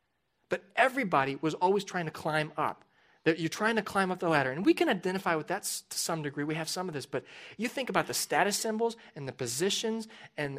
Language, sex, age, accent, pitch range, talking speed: English, male, 30-49, American, 145-195 Hz, 225 wpm